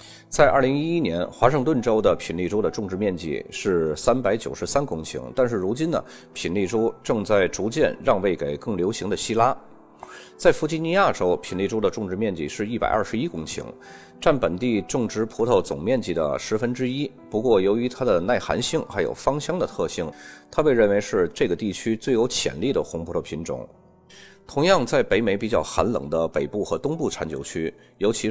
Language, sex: Chinese, male